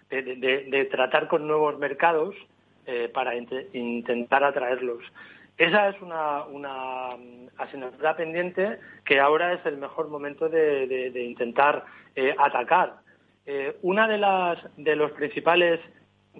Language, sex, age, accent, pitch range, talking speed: Spanish, male, 40-59, Spanish, 130-175 Hz, 135 wpm